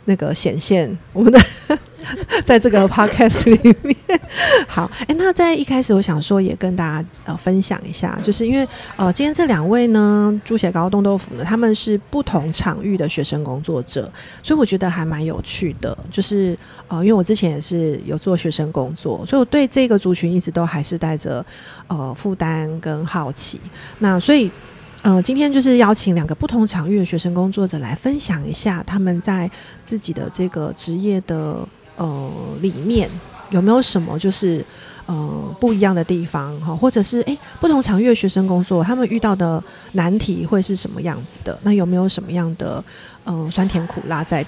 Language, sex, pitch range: Chinese, female, 165-215 Hz